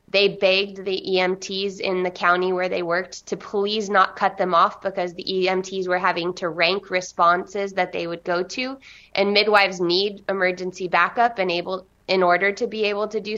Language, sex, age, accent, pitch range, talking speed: English, female, 20-39, American, 180-205 Hz, 185 wpm